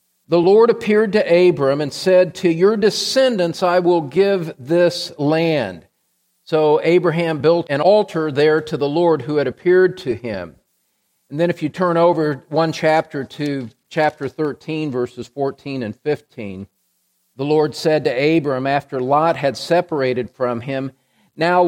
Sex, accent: male, American